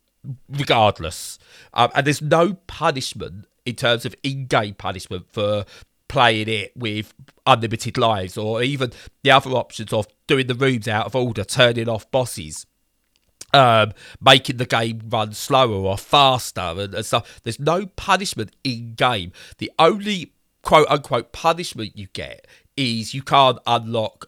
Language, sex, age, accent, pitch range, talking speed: English, male, 30-49, British, 105-135 Hz, 145 wpm